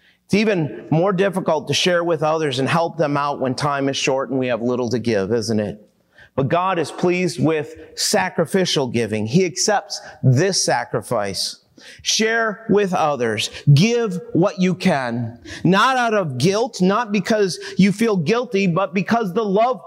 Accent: American